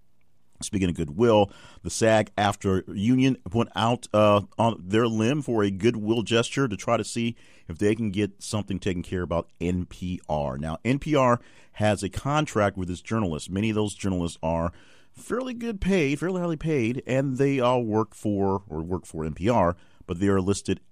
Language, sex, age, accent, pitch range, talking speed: English, male, 40-59, American, 85-115 Hz, 180 wpm